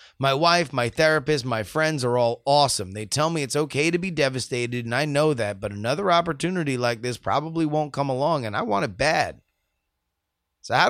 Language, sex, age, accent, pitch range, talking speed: English, male, 30-49, American, 110-145 Hz, 205 wpm